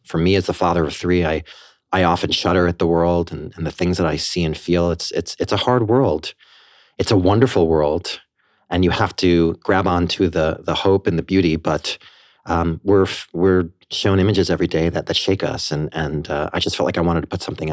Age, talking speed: 30-49, 235 wpm